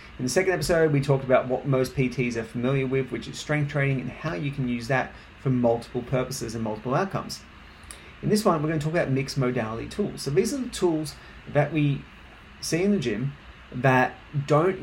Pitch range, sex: 120-150 Hz, male